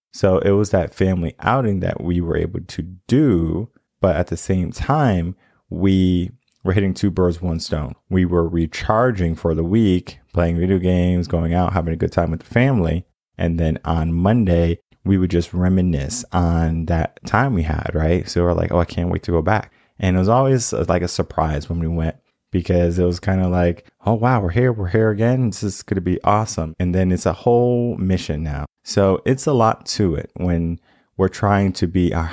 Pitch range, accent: 85-100 Hz, American